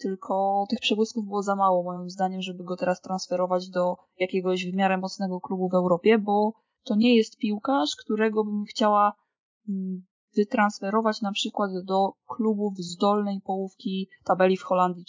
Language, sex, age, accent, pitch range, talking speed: Polish, female, 20-39, native, 190-230 Hz, 155 wpm